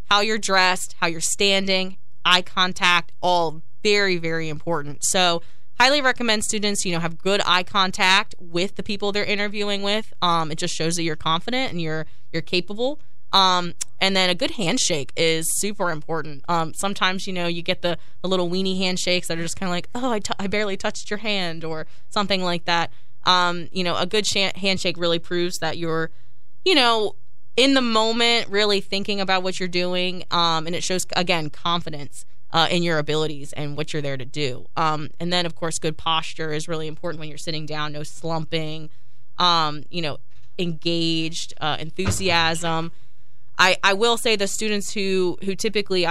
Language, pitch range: English, 160-195 Hz